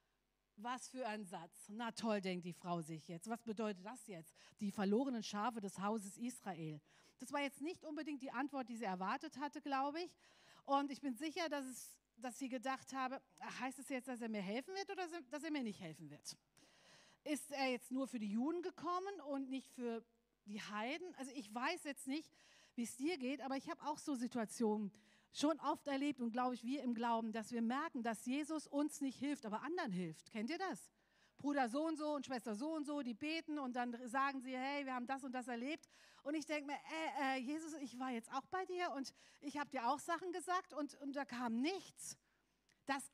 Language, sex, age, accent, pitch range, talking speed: German, female, 40-59, German, 230-295 Hz, 220 wpm